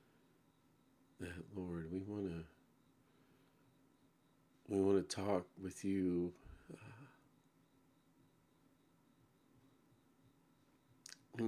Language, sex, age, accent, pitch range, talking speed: English, male, 50-69, American, 85-115 Hz, 70 wpm